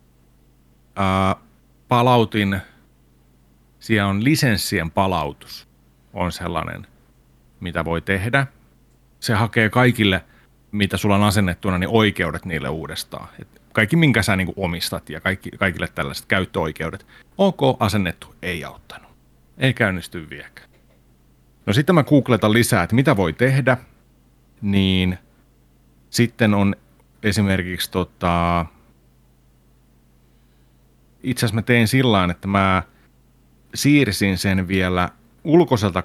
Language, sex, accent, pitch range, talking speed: Finnish, male, native, 85-120 Hz, 110 wpm